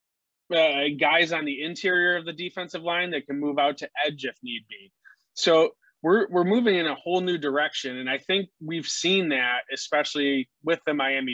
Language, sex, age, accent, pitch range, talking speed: English, male, 20-39, American, 135-170 Hz, 195 wpm